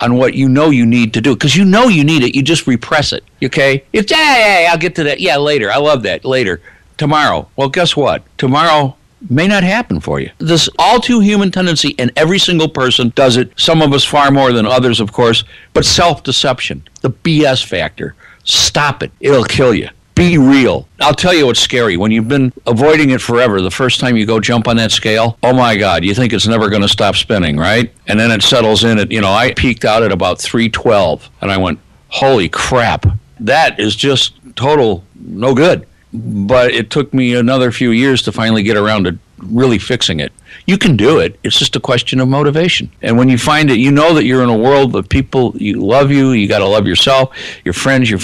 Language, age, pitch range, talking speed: English, 60-79, 110-140 Hz, 220 wpm